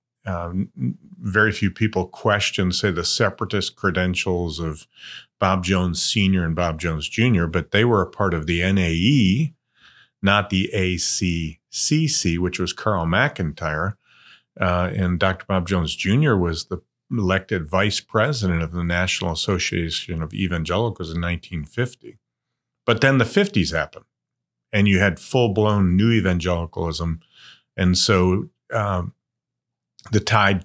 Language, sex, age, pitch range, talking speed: English, male, 40-59, 90-115 Hz, 135 wpm